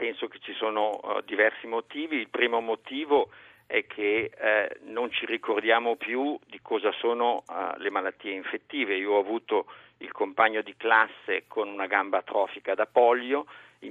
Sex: male